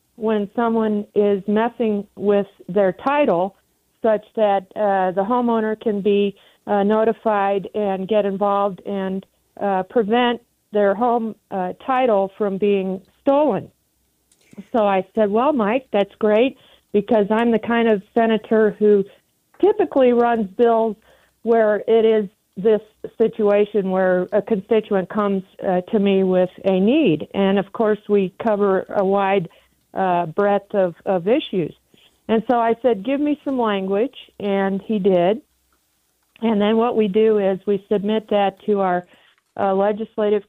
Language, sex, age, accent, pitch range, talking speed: English, female, 50-69, American, 195-225 Hz, 145 wpm